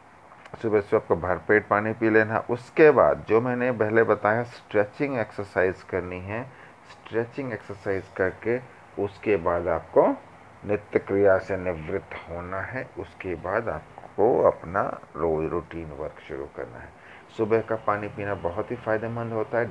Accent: native